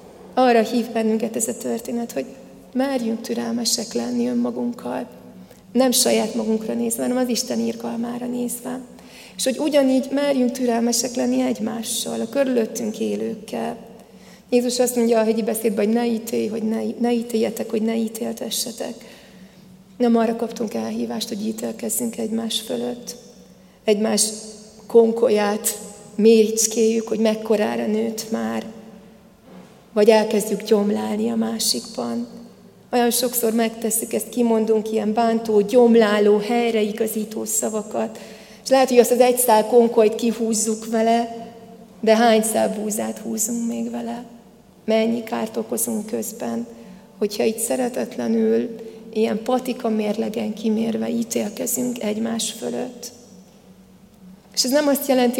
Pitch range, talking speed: 215-235 Hz, 120 wpm